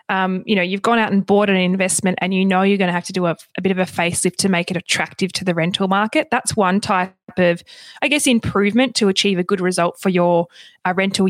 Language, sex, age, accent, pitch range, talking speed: English, female, 20-39, Australian, 175-205 Hz, 260 wpm